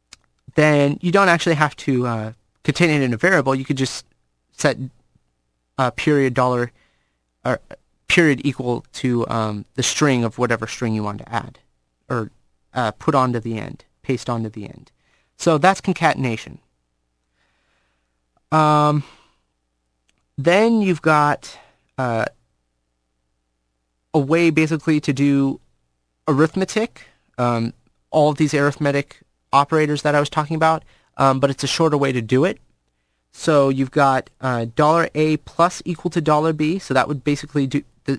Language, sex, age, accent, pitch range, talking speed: English, male, 30-49, American, 95-150 Hz, 150 wpm